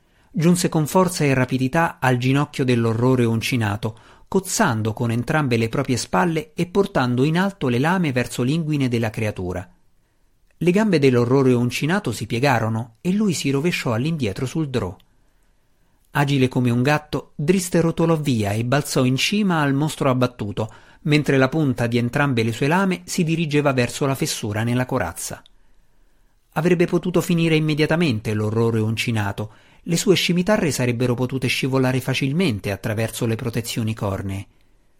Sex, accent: male, native